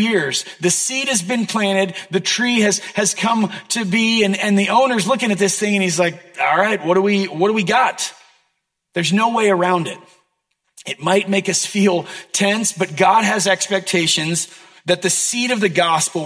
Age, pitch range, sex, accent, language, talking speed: 30-49, 185-215 Hz, male, American, English, 200 wpm